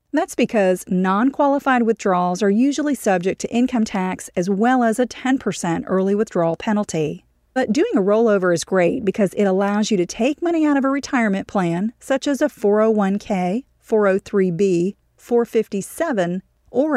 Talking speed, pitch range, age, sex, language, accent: 150 wpm, 190-255 Hz, 40-59, female, English, American